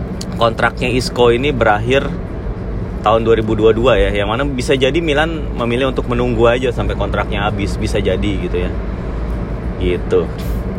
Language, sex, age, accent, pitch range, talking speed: Indonesian, male, 30-49, native, 95-120 Hz, 135 wpm